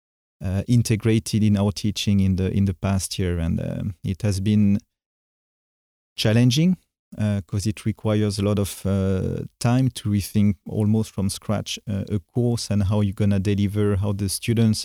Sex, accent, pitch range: male, French, 95-110 Hz